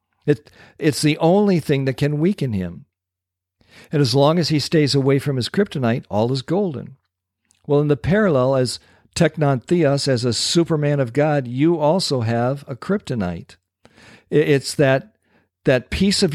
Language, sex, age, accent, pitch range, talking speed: English, male, 50-69, American, 110-145 Hz, 160 wpm